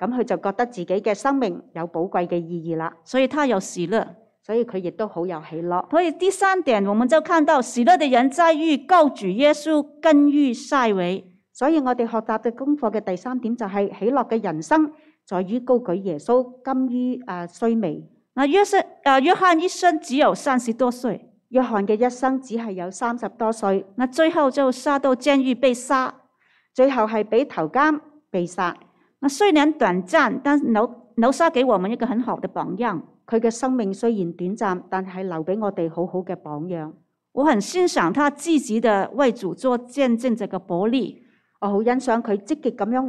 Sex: female